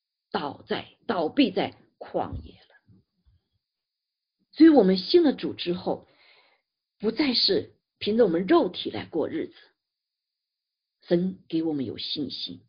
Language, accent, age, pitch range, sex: Chinese, native, 50-69, 185-280 Hz, female